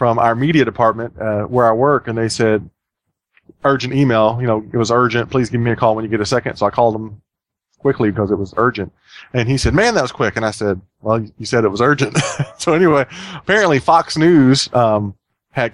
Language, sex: English, male